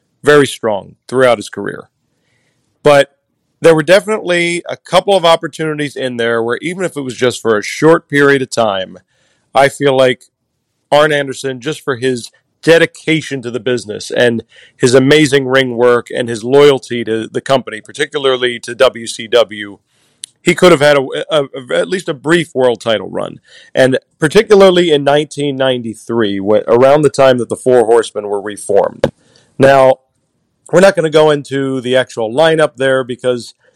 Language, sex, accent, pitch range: English, male, American, 120-150 Hz